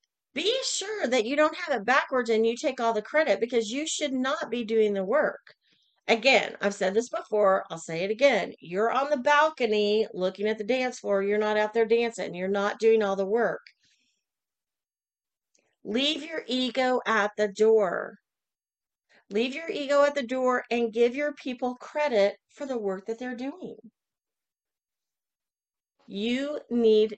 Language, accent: English, American